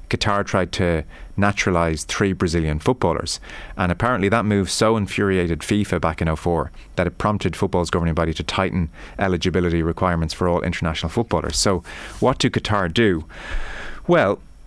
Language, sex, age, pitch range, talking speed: English, male, 30-49, 85-105 Hz, 150 wpm